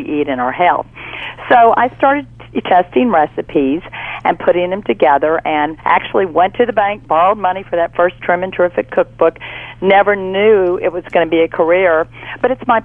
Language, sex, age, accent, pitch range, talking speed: English, female, 50-69, American, 165-225 Hz, 185 wpm